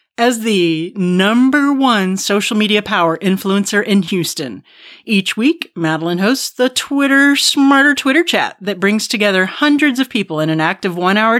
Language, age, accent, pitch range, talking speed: English, 40-59, American, 175-240 Hz, 155 wpm